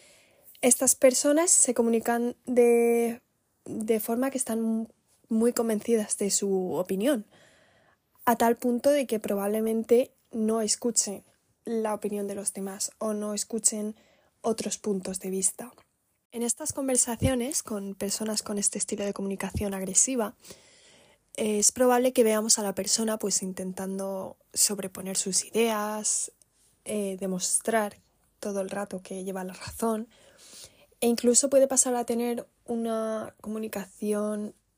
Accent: Spanish